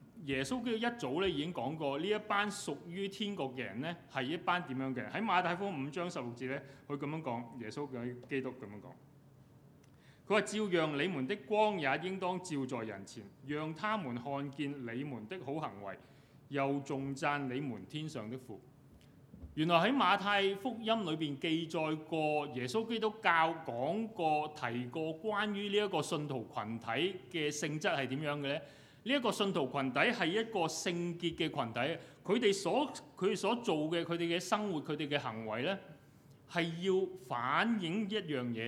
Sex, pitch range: male, 130-180 Hz